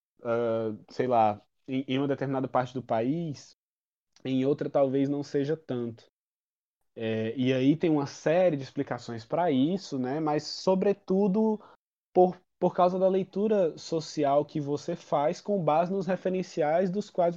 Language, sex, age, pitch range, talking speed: Portuguese, male, 20-39, 125-175 Hz, 150 wpm